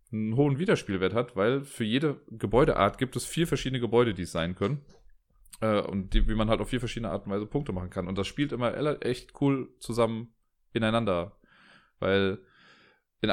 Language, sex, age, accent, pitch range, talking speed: German, male, 30-49, German, 105-135 Hz, 190 wpm